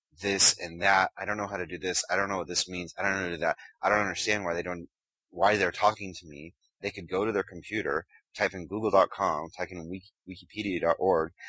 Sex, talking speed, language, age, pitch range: male, 245 wpm, English, 30-49, 85-105 Hz